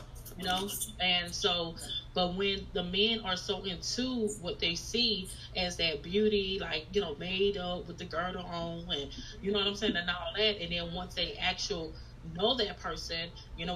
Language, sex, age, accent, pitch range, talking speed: English, female, 30-49, American, 165-205 Hz, 195 wpm